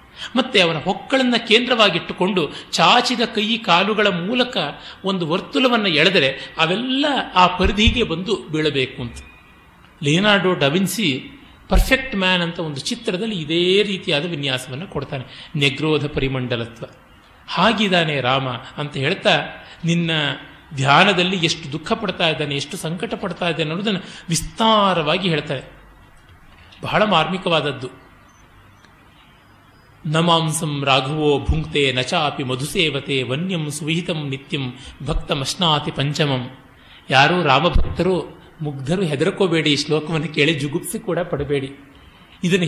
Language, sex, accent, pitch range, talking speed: Kannada, male, native, 140-190 Hz, 100 wpm